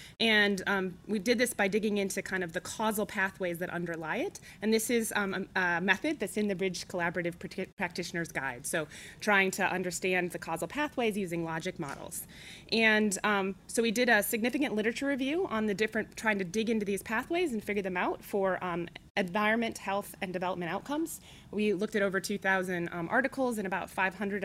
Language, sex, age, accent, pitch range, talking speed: English, female, 20-39, American, 180-220 Hz, 190 wpm